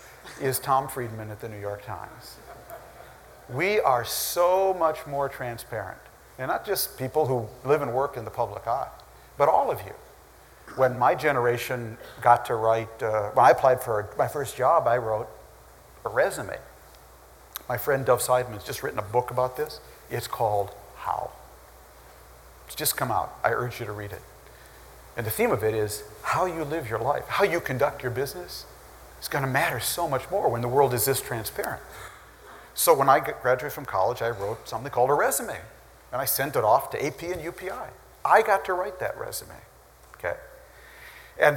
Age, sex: 50-69, male